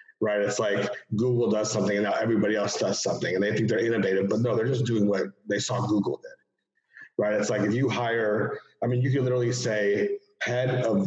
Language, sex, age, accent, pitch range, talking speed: English, male, 40-59, American, 105-120 Hz, 215 wpm